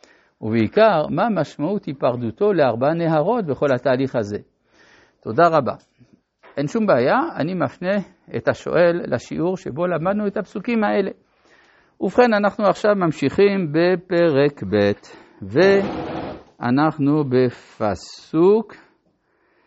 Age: 60-79